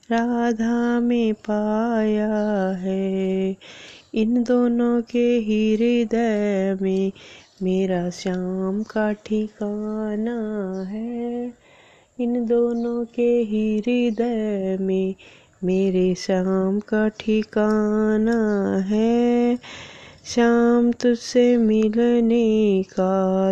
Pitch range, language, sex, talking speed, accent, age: 205-240 Hz, Hindi, female, 70 wpm, native, 20-39